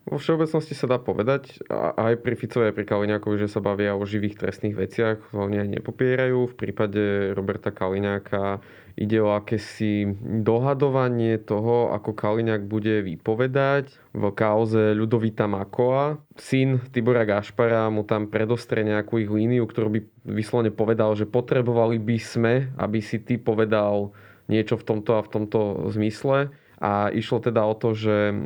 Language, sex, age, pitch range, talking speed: Slovak, male, 20-39, 105-120 Hz, 155 wpm